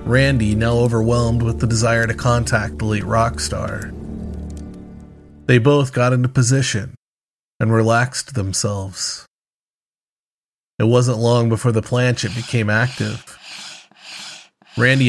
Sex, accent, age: male, American, 30-49